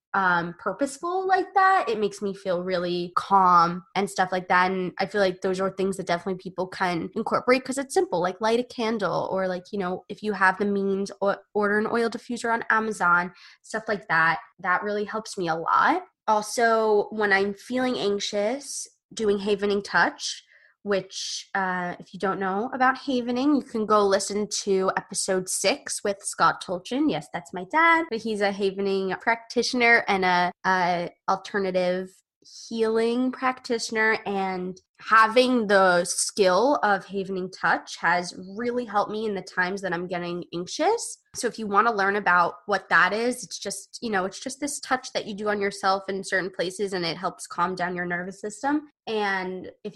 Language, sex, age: English, female, 20-39